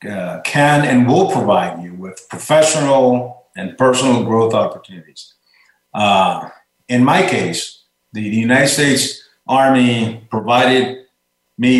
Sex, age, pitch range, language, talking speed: male, 50-69, 100-130 Hz, English, 115 wpm